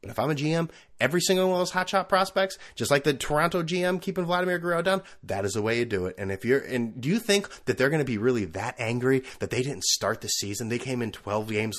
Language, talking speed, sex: English, 280 wpm, male